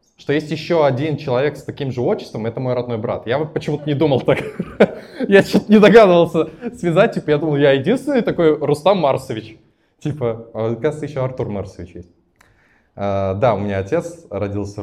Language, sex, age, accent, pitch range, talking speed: Russian, male, 20-39, native, 100-155 Hz, 175 wpm